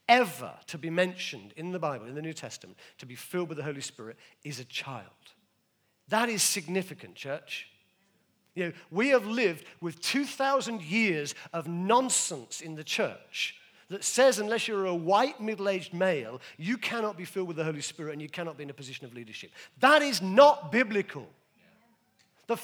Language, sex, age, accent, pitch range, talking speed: English, male, 50-69, British, 185-285 Hz, 180 wpm